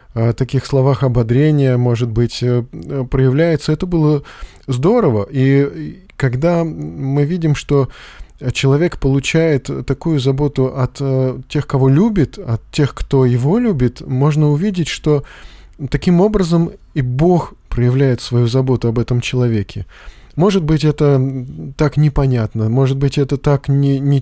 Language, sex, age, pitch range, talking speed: Russian, male, 20-39, 130-160 Hz, 125 wpm